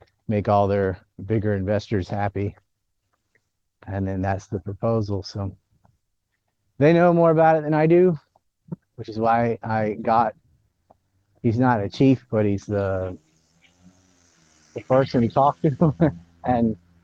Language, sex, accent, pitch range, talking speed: English, male, American, 100-130 Hz, 135 wpm